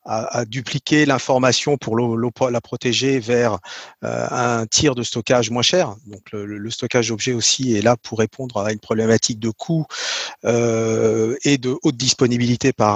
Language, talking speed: French, 150 wpm